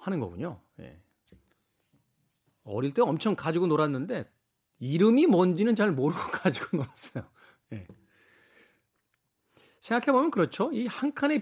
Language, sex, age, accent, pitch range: Korean, male, 40-59, native, 120-200 Hz